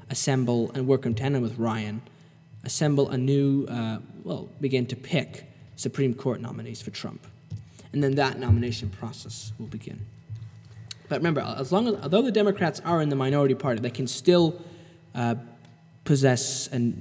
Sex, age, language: male, 10-29, English